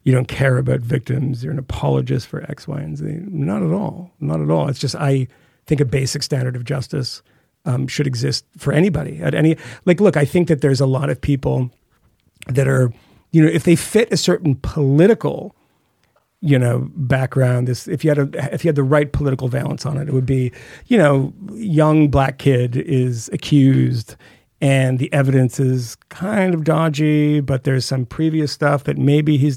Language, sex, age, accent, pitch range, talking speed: English, male, 40-59, American, 130-150 Hz, 195 wpm